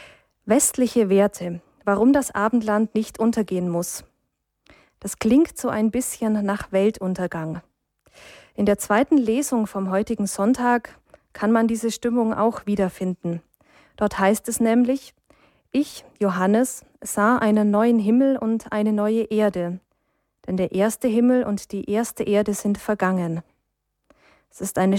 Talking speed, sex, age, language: 130 wpm, female, 20-39, German